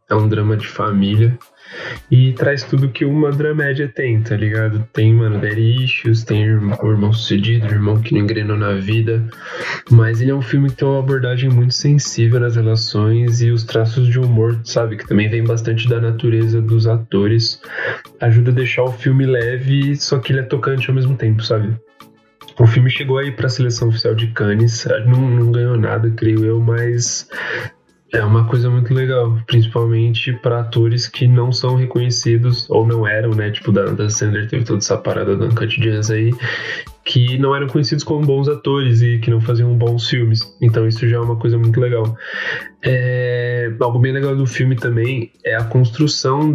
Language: Portuguese